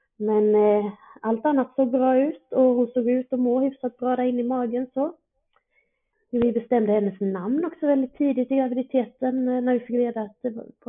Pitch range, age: 200-255 Hz, 30-49